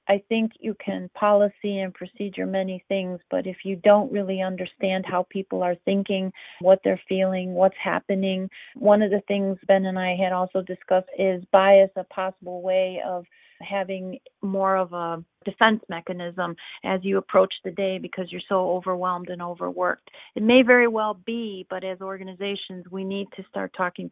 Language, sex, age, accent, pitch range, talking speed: English, female, 40-59, American, 180-205 Hz, 175 wpm